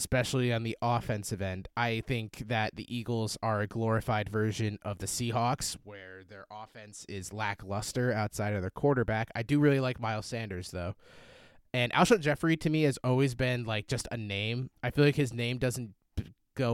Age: 20-39